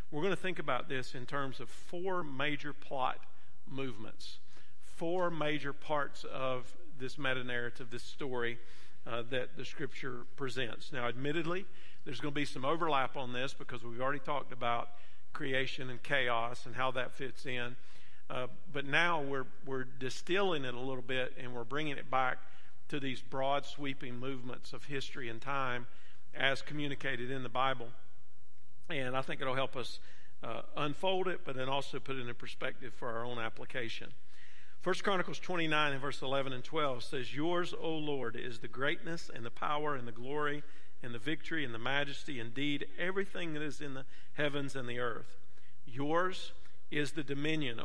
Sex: male